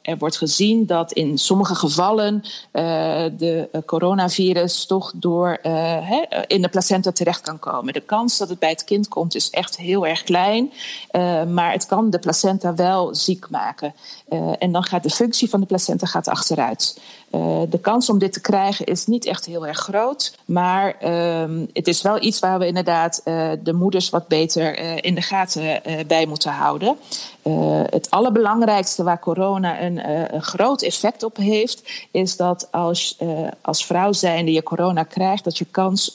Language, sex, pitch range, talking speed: Dutch, female, 165-200 Hz, 190 wpm